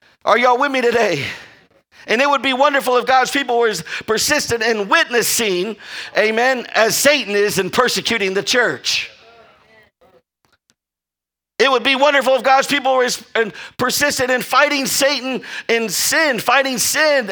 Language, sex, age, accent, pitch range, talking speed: English, male, 50-69, American, 220-275 Hz, 145 wpm